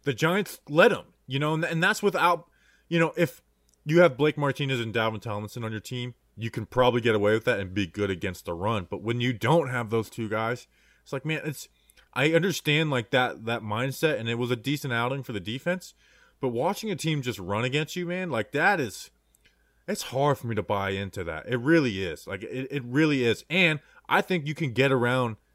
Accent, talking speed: American, 230 wpm